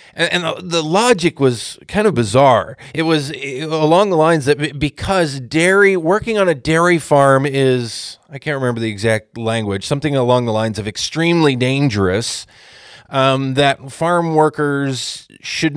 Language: English